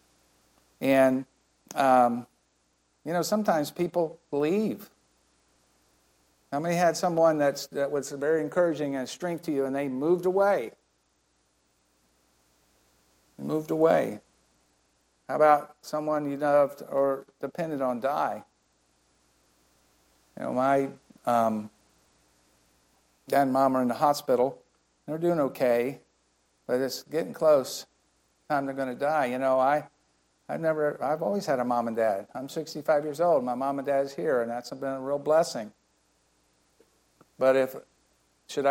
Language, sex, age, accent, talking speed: English, male, 50-69, American, 140 wpm